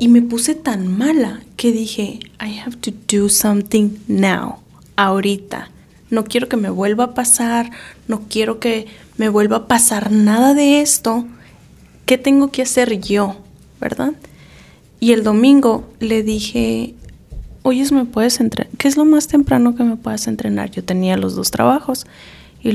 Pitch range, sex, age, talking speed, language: 205-240 Hz, female, 20-39, 165 wpm, Spanish